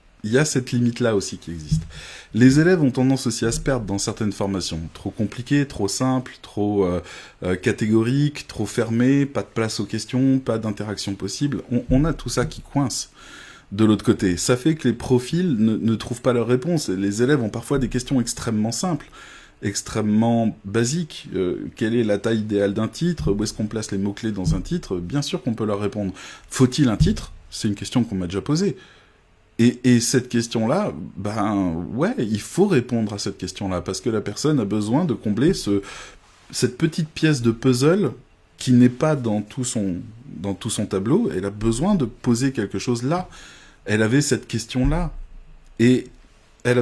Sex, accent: male, French